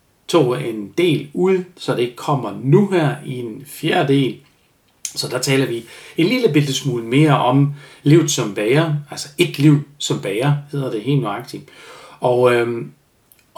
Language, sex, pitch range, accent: Danish, male, 115-145 Hz, native